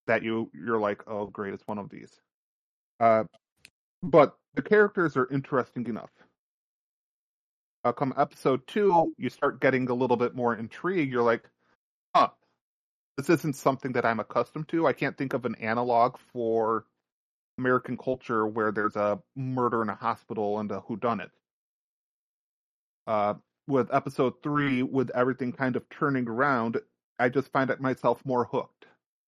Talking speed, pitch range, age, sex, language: 150 wpm, 115-140 Hz, 30-49, male, English